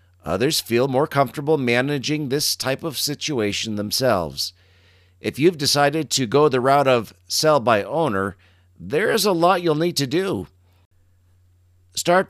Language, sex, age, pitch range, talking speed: English, male, 50-69, 90-155 Hz, 135 wpm